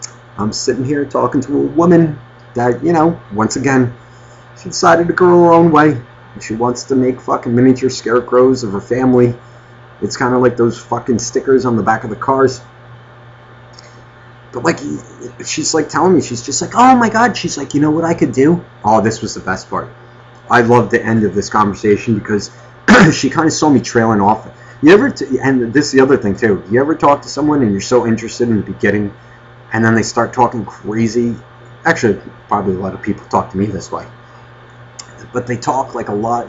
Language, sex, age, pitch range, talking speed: English, male, 30-49, 110-135 Hz, 210 wpm